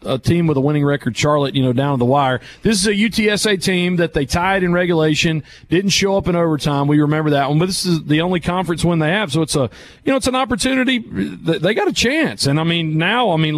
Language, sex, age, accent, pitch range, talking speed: English, male, 40-59, American, 150-190 Hz, 260 wpm